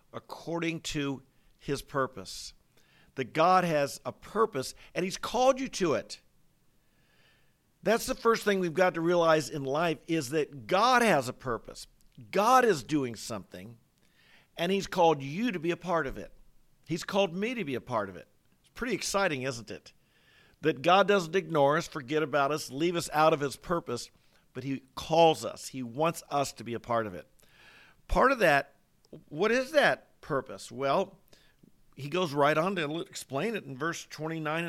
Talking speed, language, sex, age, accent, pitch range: 180 wpm, English, male, 50-69, American, 140-175 Hz